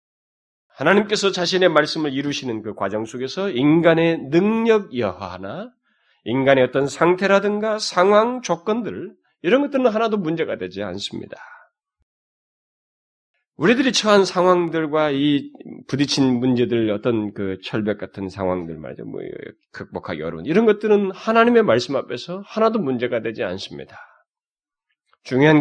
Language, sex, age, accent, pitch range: Korean, male, 30-49, native, 135-205 Hz